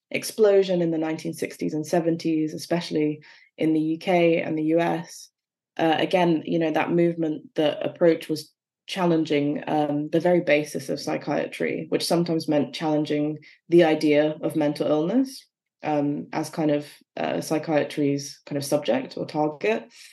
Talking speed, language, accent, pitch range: 145 wpm, English, British, 155-175 Hz